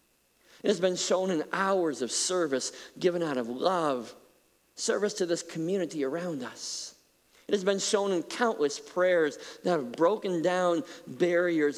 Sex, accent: male, American